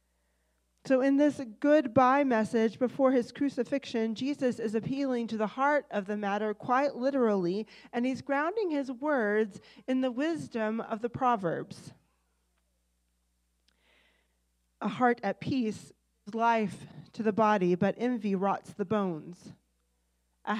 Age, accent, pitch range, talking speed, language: 40-59, American, 180-245 Hz, 130 wpm, English